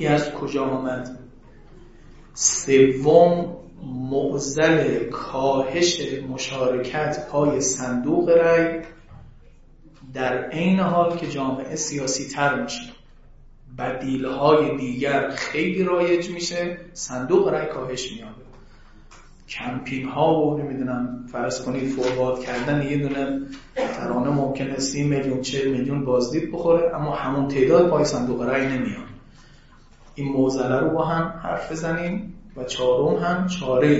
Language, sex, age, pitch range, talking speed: Persian, male, 30-49, 130-155 Hz, 110 wpm